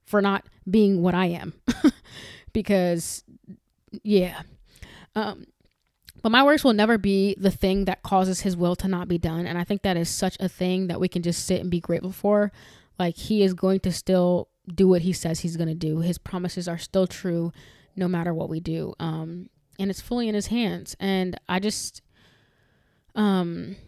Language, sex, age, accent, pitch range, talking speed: English, female, 20-39, American, 175-200 Hz, 195 wpm